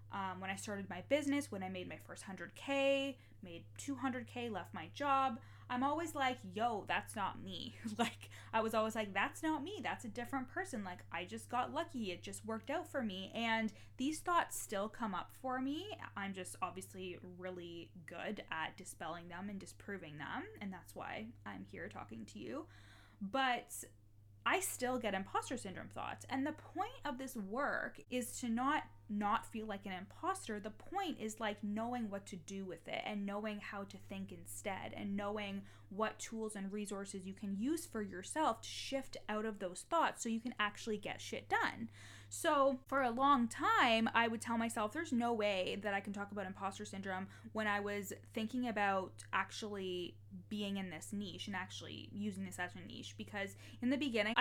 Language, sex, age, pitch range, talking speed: English, female, 20-39, 185-250 Hz, 195 wpm